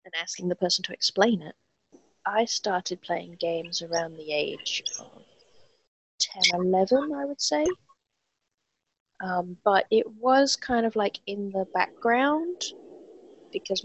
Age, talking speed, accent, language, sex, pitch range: 20-39, 135 wpm, British, English, female, 175-225 Hz